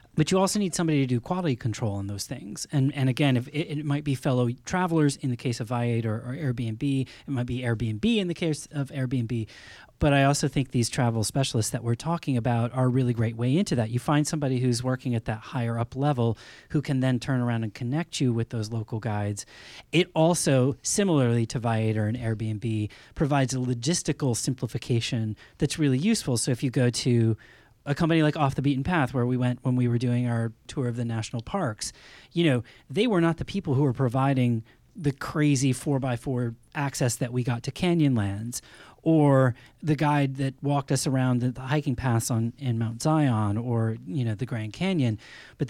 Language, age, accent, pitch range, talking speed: English, 30-49, American, 120-145 Hz, 210 wpm